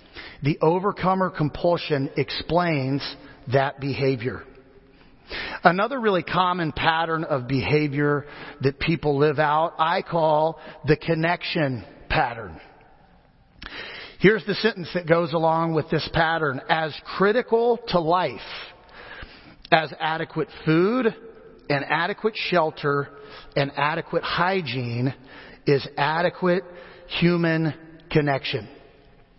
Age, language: 40-59, English